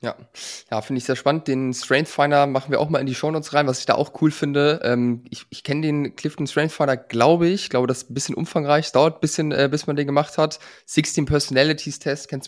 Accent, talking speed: German, 250 wpm